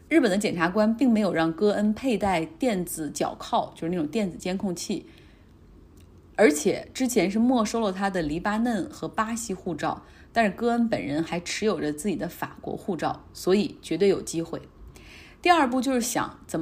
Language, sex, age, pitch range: Chinese, female, 30-49, 170-235 Hz